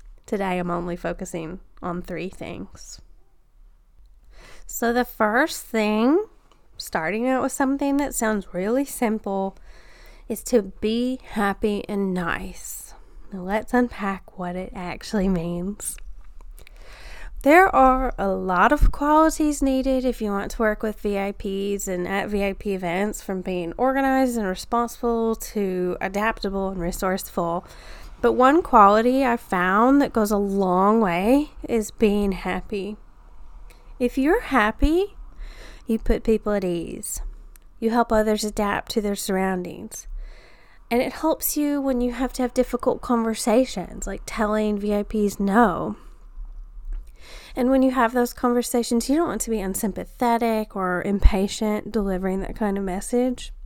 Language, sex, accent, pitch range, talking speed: English, female, American, 195-245 Hz, 135 wpm